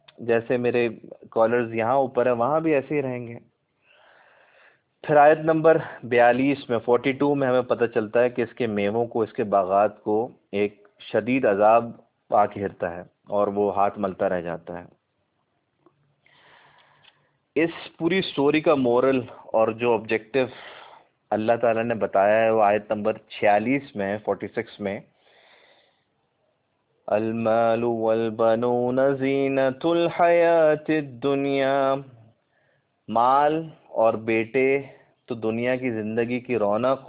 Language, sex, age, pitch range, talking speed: Urdu, male, 30-49, 110-140 Hz, 125 wpm